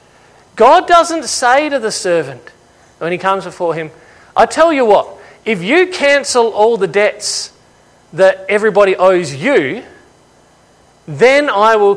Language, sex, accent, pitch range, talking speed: English, male, Australian, 165-225 Hz, 140 wpm